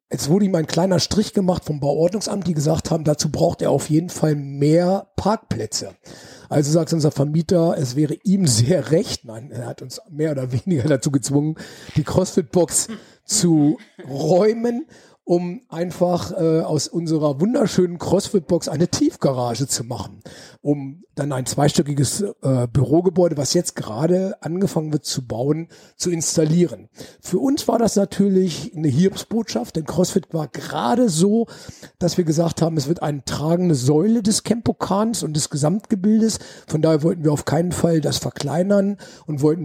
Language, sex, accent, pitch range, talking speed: German, male, German, 150-190 Hz, 160 wpm